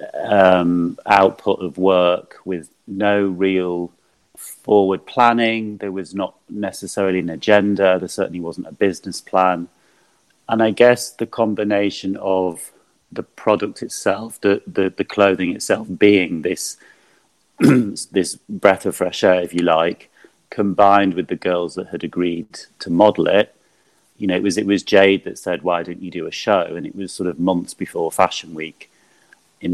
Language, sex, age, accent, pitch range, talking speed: English, male, 40-59, British, 85-100 Hz, 160 wpm